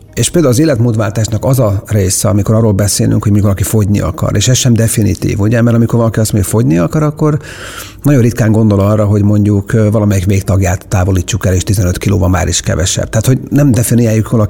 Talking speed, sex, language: 205 wpm, male, Hungarian